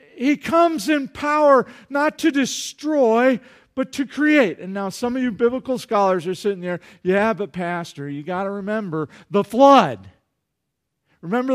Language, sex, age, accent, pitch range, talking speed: English, male, 50-69, American, 210-270 Hz, 155 wpm